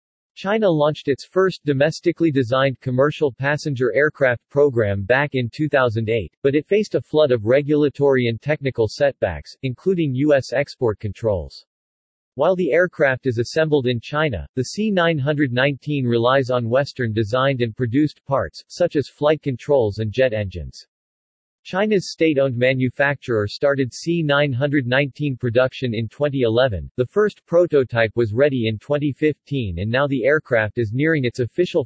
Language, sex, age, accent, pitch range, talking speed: English, male, 40-59, American, 120-150 Hz, 135 wpm